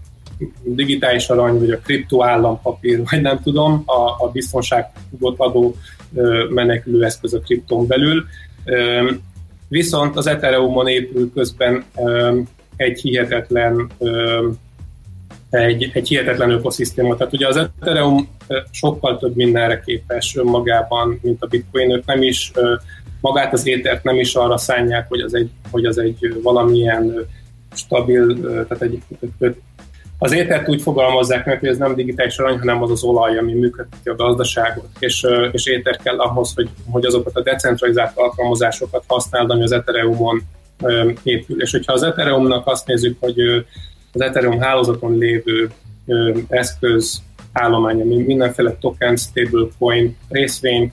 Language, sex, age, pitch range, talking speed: Hungarian, male, 30-49, 115-125 Hz, 125 wpm